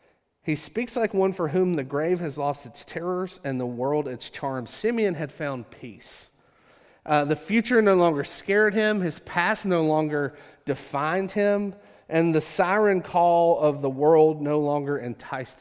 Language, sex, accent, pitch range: English, male, American, 145-180 Hz